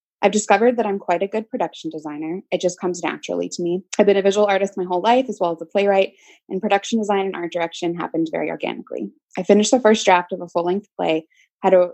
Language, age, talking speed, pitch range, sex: English, 20-39, 240 wpm, 175-215 Hz, female